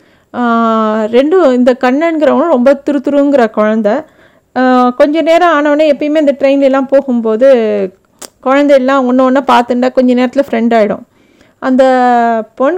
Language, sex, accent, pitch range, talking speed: Tamil, female, native, 225-280 Hz, 115 wpm